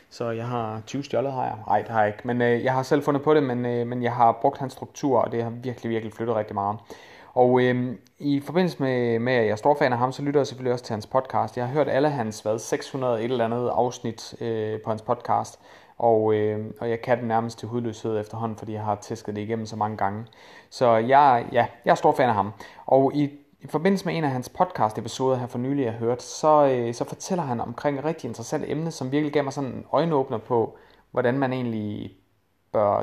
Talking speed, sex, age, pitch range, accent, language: 245 wpm, male, 30-49, 110-130 Hz, native, Danish